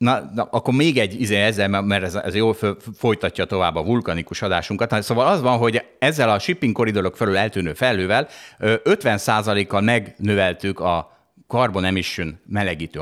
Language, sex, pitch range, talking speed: Hungarian, male, 95-125 Hz, 155 wpm